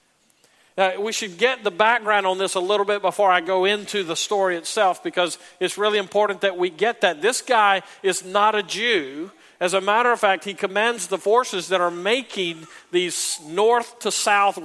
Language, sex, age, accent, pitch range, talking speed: English, male, 50-69, American, 150-200 Hz, 195 wpm